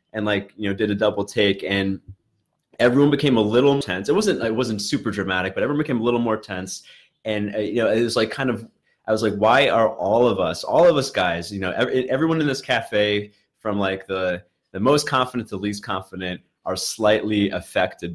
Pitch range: 95-115 Hz